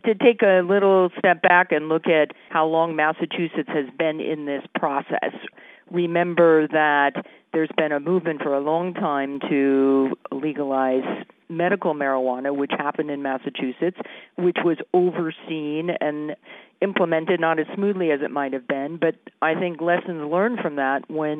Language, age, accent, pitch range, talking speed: English, 50-69, American, 145-175 Hz, 155 wpm